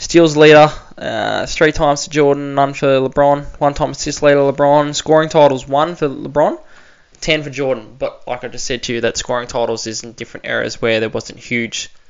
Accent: Australian